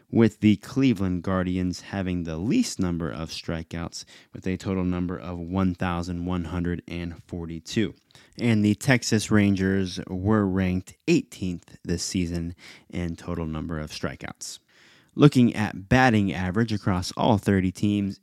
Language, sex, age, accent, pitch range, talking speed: English, male, 20-39, American, 90-110 Hz, 125 wpm